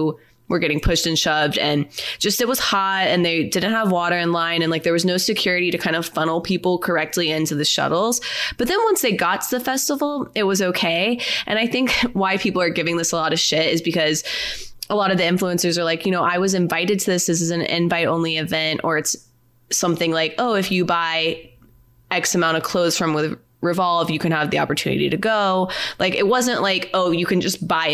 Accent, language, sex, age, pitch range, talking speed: American, English, female, 20-39, 165-220 Hz, 230 wpm